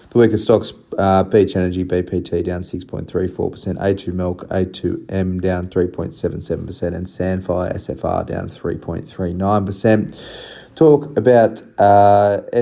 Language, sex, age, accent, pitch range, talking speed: English, male, 20-39, Australian, 90-100 Hz, 105 wpm